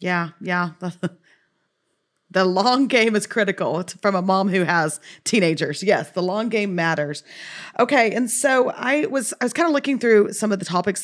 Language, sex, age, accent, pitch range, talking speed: English, female, 40-59, American, 180-220 Hz, 185 wpm